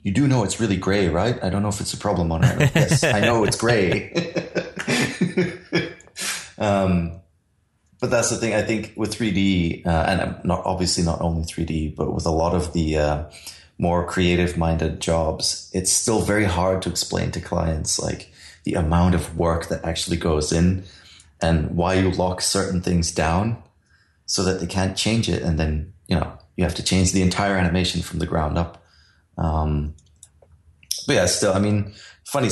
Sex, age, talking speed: male, 30-49, 185 wpm